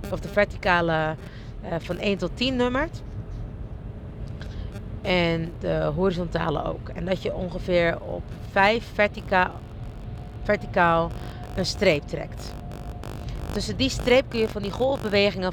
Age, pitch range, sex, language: 40-59, 130-215 Hz, female, Dutch